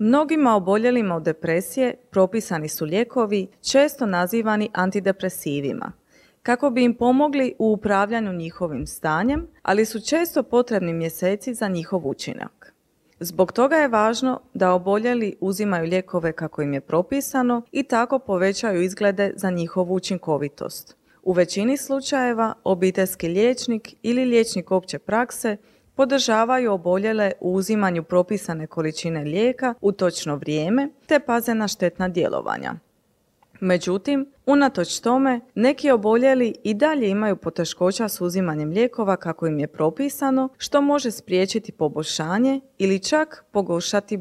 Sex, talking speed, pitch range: female, 125 wpm, 180-245 Hz